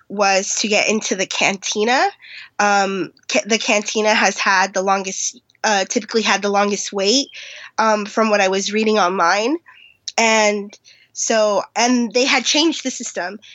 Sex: female